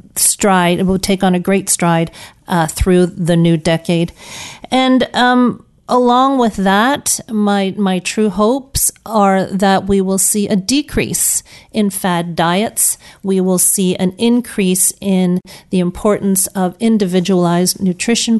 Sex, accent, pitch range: female, American, 180-205 Hz